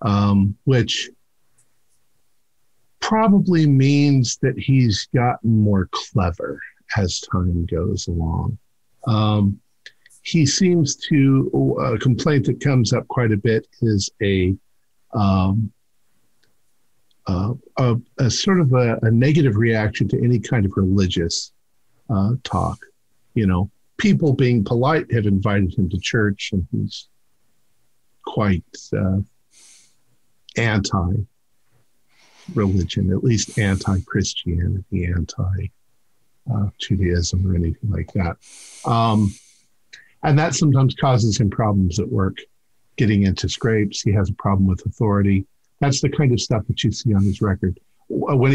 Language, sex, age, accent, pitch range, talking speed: English, male, 50-69, American, 95-125 Hz, 120 wpm